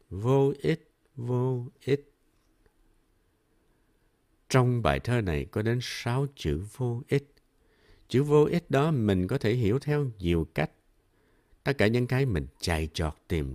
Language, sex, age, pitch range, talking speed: Vietnamese, male, 60-79, 90-140 Hz, 145 wpm